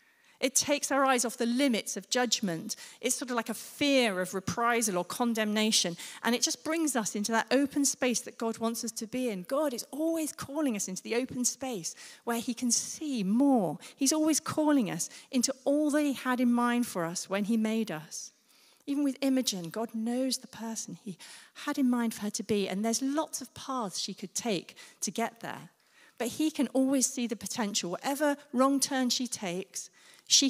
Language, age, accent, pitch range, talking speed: English, 40-59, British, 195-260 Hz, 205 wpm